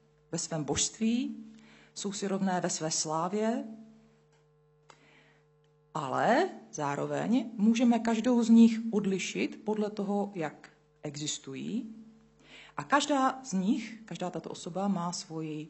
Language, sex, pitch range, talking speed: Czech, female, 150-225 Hz, 110 wpm